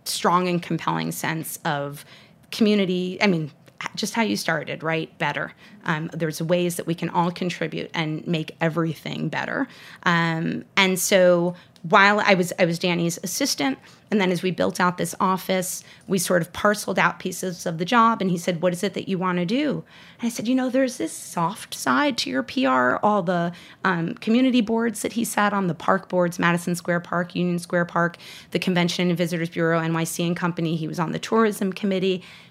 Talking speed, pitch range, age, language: 200 wpm, 165-195 Hz, 30-49, English